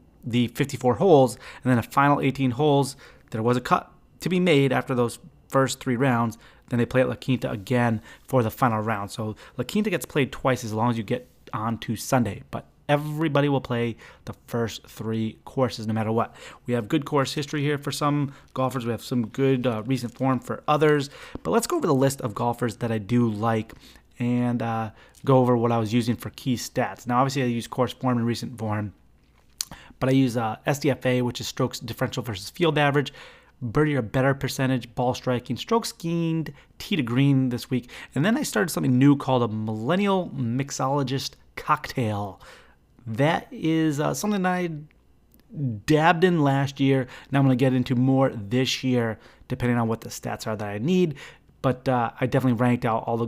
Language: English